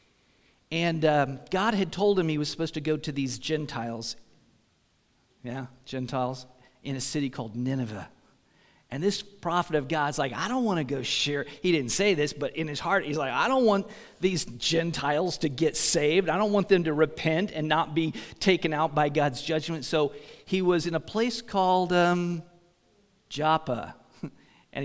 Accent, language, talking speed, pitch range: American, English, 180 wpm, 135-180 Hz